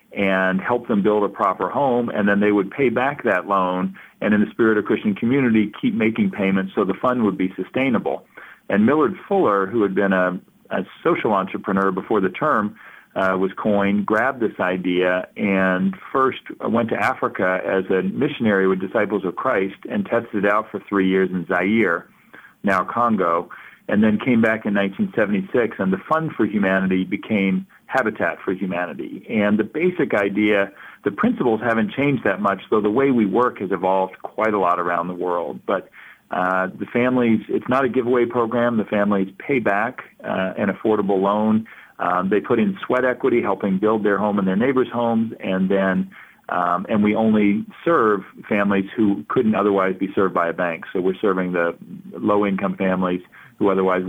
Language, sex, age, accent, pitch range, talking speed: English, male, 40-59, American, 95-110 Hz, 185 wpm